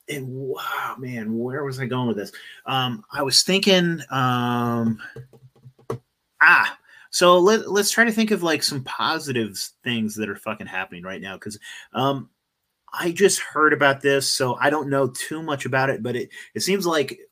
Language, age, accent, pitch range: English, 30-49, American, 120-150 Hz